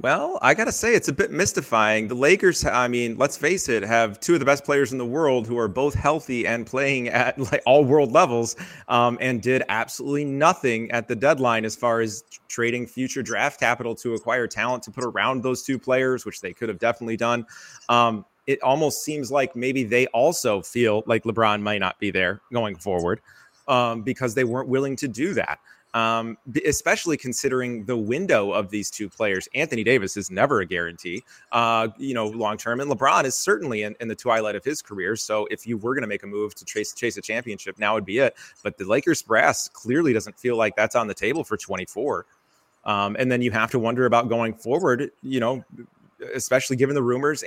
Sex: male